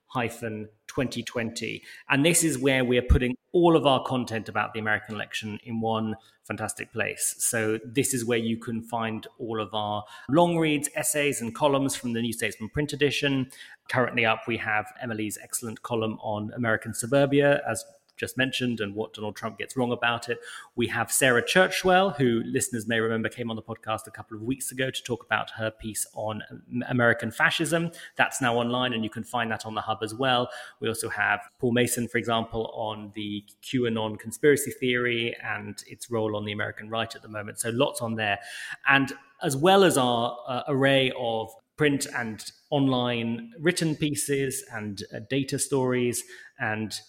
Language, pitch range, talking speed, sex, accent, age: English, 110-135 Hz, 185 wpm, male, British, 30-49